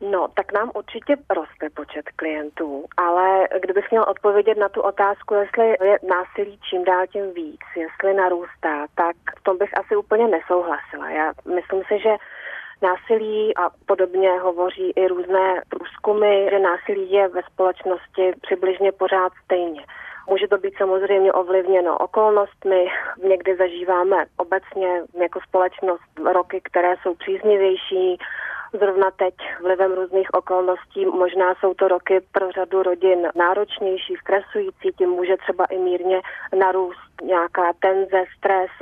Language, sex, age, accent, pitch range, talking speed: Czech, female, 30-49, native, 185-205 Hz, 135 wpm